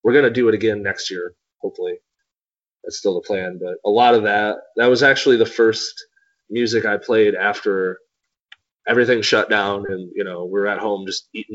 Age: 30-49